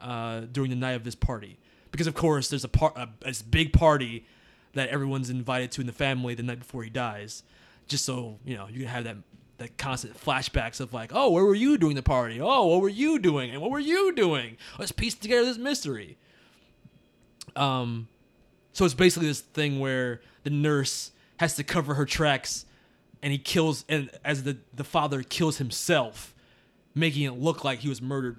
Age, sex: 20-39, male